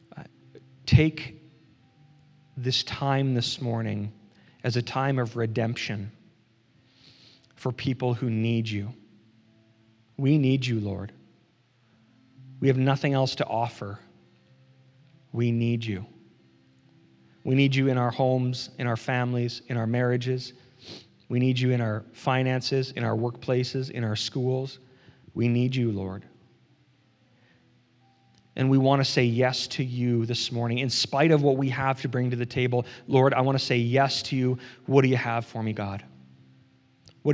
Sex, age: male, 40-59